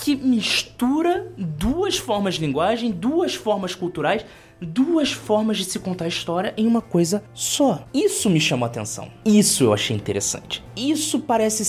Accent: Brazilian